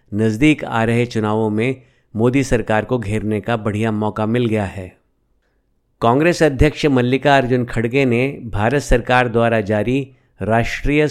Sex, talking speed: male, 135 wpm